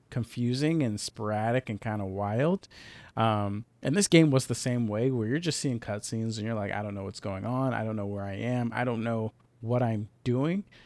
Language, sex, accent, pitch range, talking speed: English, male, American, 110-135 Hz, 220 wpm